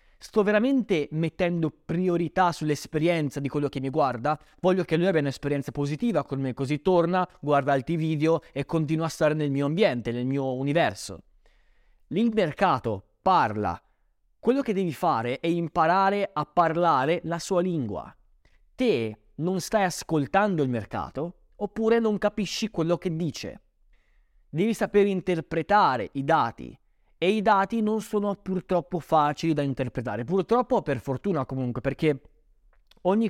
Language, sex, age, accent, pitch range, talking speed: Italian, male, 20-39, native, 140-190 Hz, 140 wpm